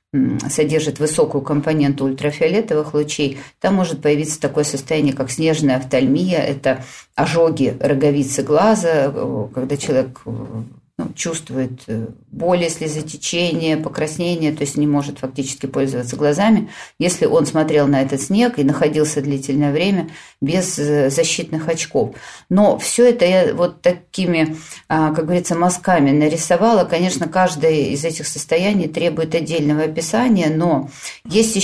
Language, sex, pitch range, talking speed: Russian, female, 145-180 Hz, 120 wpm